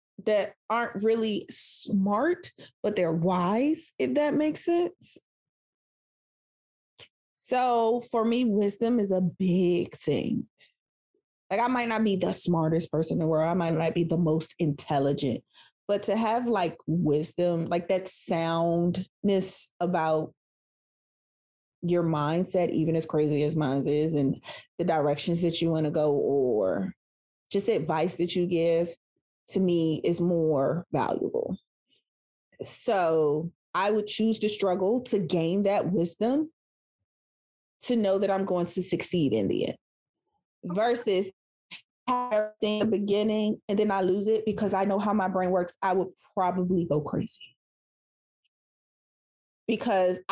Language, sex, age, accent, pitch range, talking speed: English, female, 30-49, American, 165-215 Hz, 135 wpm